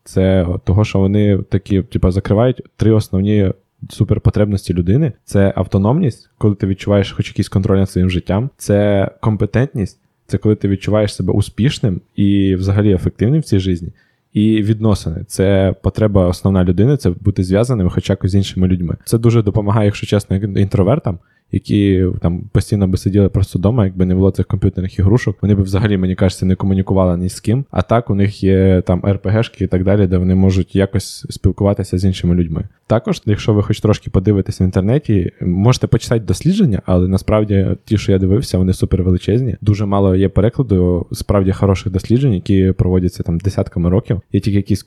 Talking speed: 175 wpm